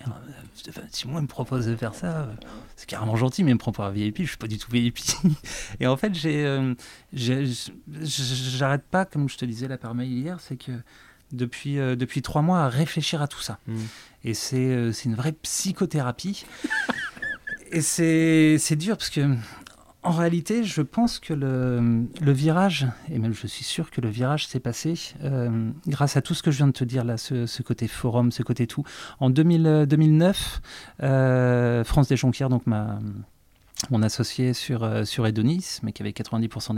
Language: French